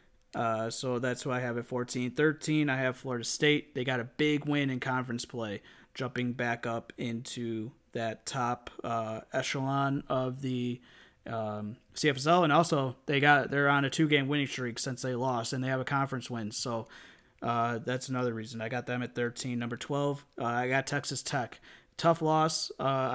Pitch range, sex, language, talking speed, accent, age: 120-140 Hz, male, English, 190 wpm, American, 20-39